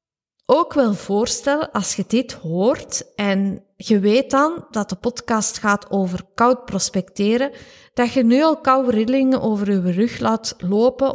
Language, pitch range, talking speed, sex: Dutch, 195-265 Hz, 155 wpm, female